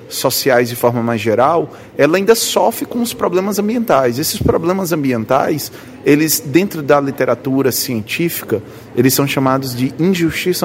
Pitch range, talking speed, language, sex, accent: 115-155 Hz, 135 wpm, Portuguese, male, Brazilian